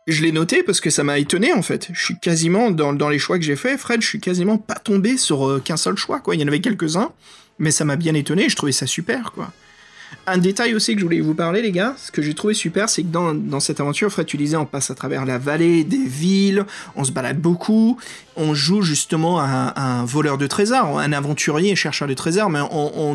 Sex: male